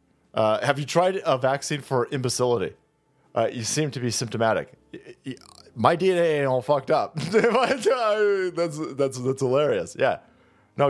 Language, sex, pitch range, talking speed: English, male, 125-175 Hz, 145 wpm